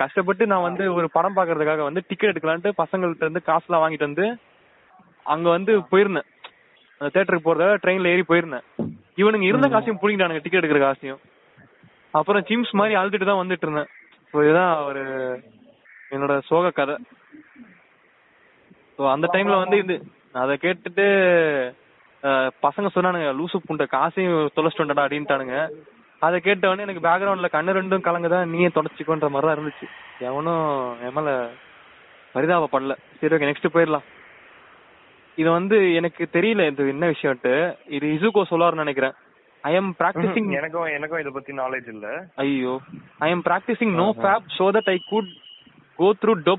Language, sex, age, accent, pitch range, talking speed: Tamil, male, 20-39, native, 150-195 Hz, 70 wpm